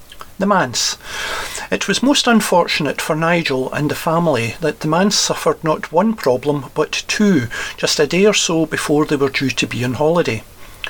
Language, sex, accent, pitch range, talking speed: English, male, British, 140-170 Hz, 175 wpm